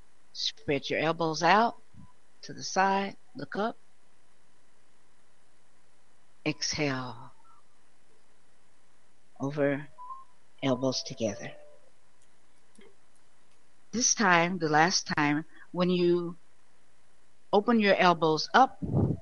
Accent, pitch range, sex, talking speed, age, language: American, 150-195 Hz, female, 75 wpm, 60-79, English